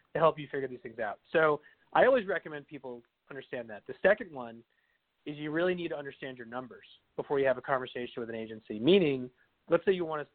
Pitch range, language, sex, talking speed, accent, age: 130-165 Hz, English, male, 225 wpm, American, 30-49